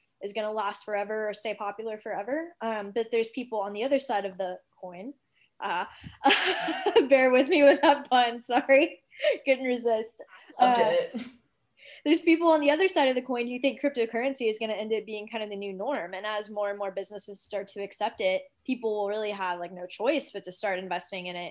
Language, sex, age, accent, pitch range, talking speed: English, female, 10-29, American, 195-245 Hz, 210 wpm